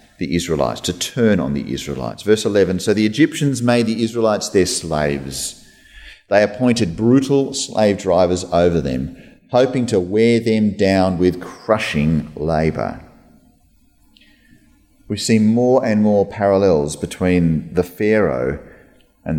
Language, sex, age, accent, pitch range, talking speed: English, male, 40-59, Australian, 85-110 Hz, 130 wpm